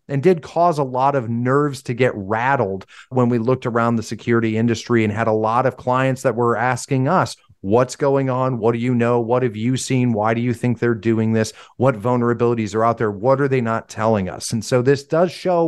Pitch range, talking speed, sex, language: 115-135 Hz, 235 wpm, male, English